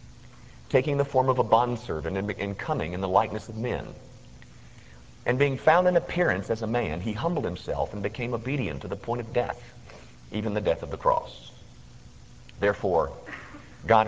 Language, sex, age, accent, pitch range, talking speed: English, male, 50-69, American, 100-135 Hz, 170 wpm